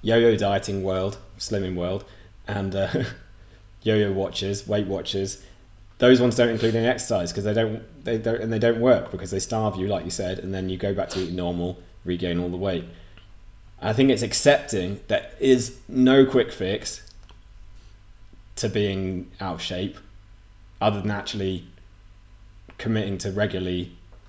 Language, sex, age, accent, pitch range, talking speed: English, male, 20-39, British, 95-110 Hz, 160 wpm